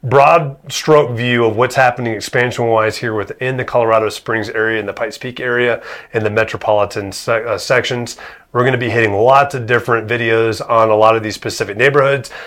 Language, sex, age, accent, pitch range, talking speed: English, male, 30-49, American, 105-125 Hz, 195 wpm